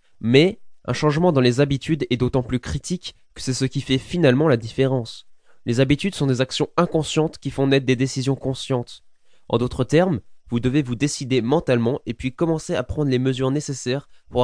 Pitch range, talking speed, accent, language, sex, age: 120-145 Hz, 195 wpm, French, French, male, 20-39